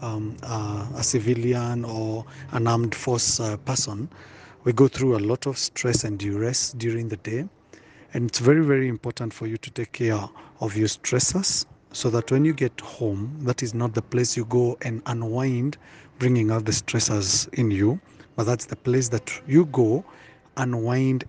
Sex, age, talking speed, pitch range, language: male, 40-59, 180 wpm, 115-130 Hz, English